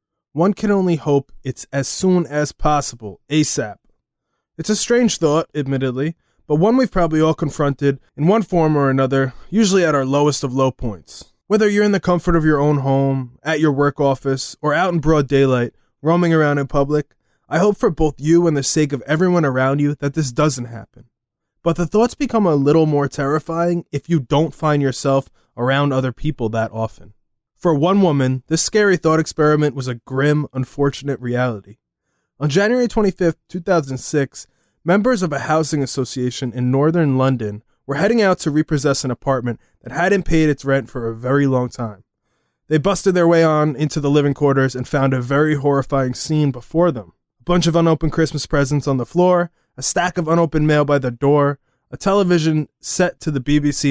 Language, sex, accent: English, male, American